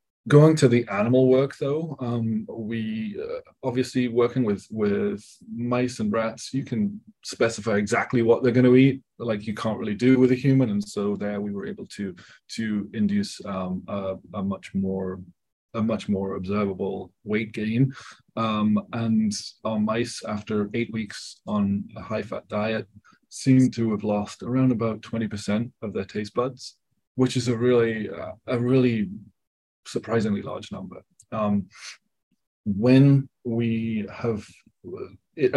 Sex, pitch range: male, 105-125 Hz